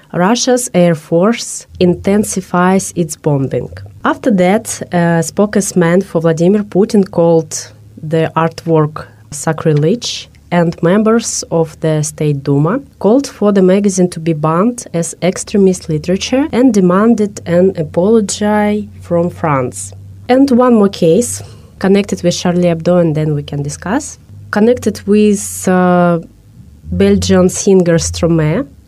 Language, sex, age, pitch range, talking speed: English, female, 20-39, 160-200 Hz, 125 wpm